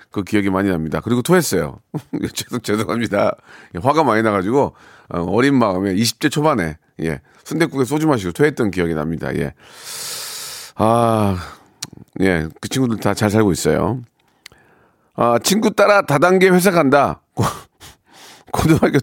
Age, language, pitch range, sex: 40-59, Korean, 105-150 Hz, male